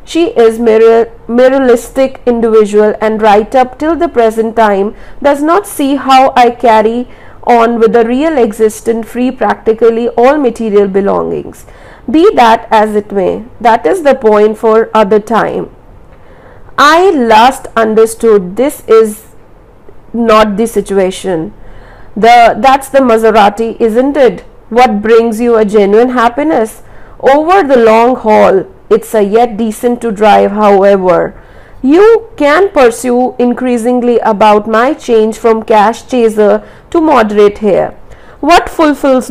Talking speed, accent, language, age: 130 wpm, Indian, English, 50-69